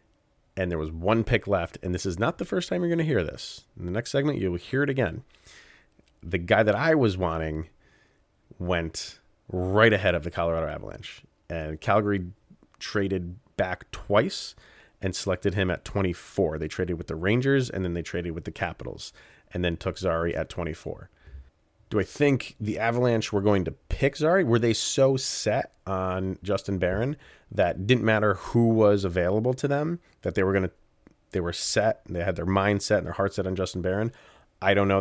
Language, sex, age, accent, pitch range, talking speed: English, male, 30-49, American, 85-110 Hz, 195 wpm